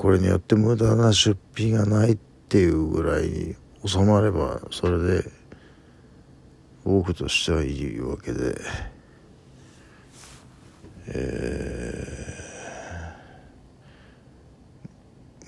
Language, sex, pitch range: Japanese, male, 75-100 Hz